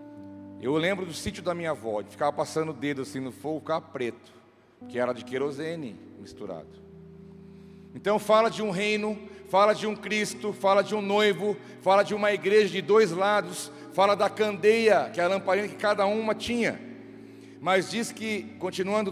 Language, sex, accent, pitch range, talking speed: Portuguese, male, Brazilian, 140-205 Hz, 180 wpm